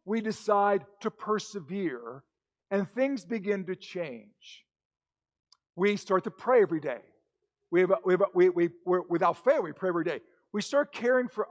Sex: male